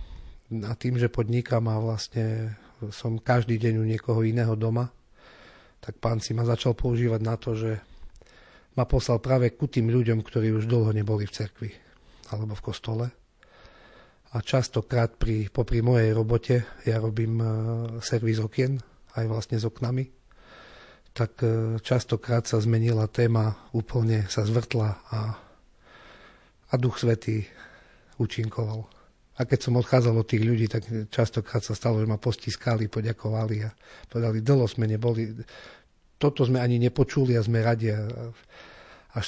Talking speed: 140 wpm